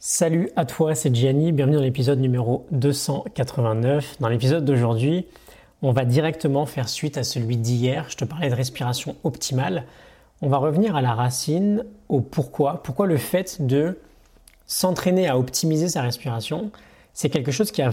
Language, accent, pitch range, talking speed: French, French, 130-165 Hz, 165 wpm